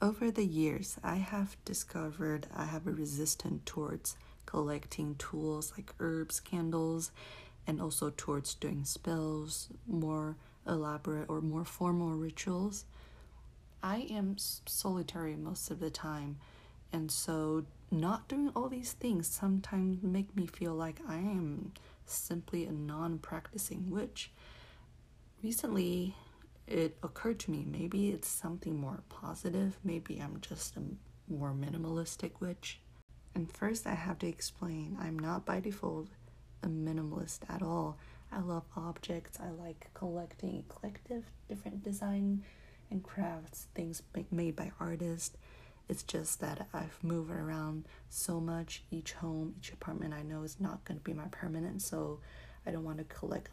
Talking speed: 140 wpm